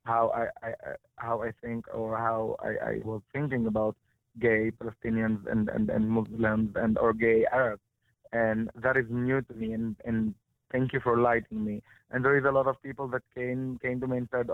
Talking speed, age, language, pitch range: 205 wpm, 20-39, English, 115-130 Hz